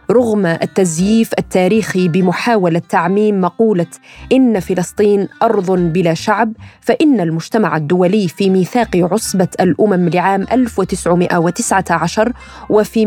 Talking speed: 95 wpm